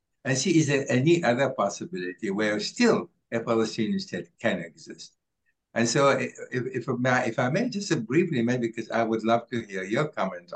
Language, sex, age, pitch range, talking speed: English, male, 60-79, 105-140 Hz, 195 wpm